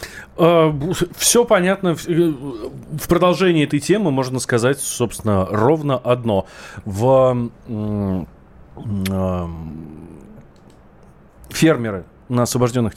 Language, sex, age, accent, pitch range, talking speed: Russian, male, 30-49, native, 105-150 Hz, 70 wpm